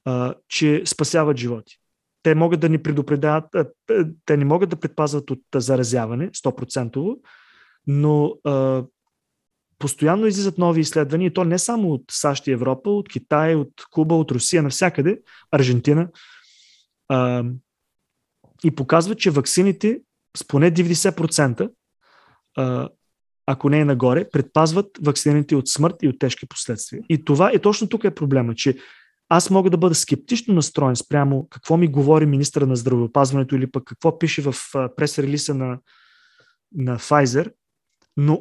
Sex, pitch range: male, 135-175 Hz